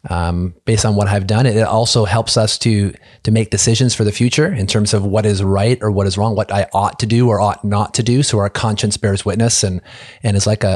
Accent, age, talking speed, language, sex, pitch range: American, 30-49, 260 wpm, English, male, 100-120 Hz